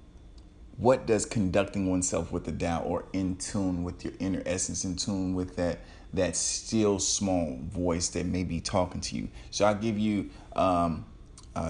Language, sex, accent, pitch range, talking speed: English, male, American, 90-125 Hz, 175 wpm